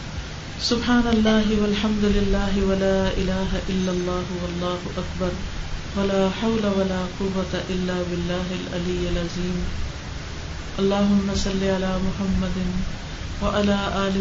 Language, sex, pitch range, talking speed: Urdu, female, 180-205 Hz, 105 wpm